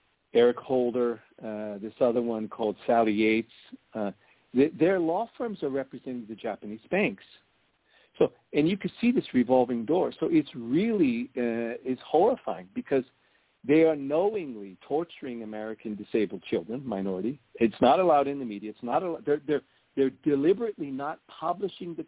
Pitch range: 110-150 Hz